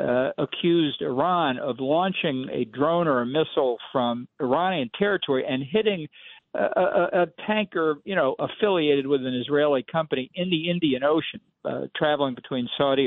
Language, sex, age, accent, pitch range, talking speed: English, male, 50-69, American, 120-150 Hz, 150 wpm